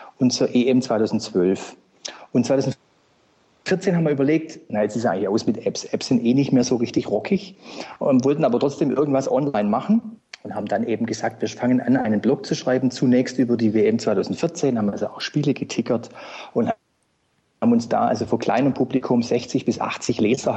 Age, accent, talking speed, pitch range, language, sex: 40-59, German, 190 wpm, 115-140 Hz, German, male